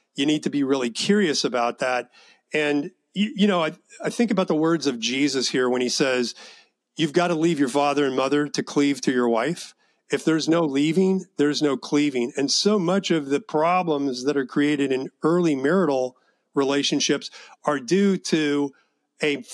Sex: male